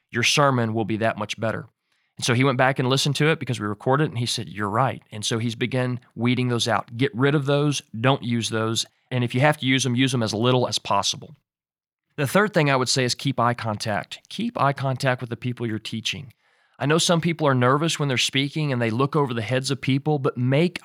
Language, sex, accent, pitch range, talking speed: English, male, American, 120-150 Hz, 255 wpm